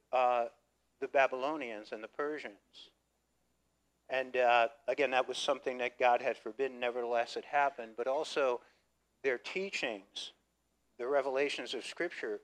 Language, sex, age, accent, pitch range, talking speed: English, male, 50-69, American, 120-170 Hz, 130 wpm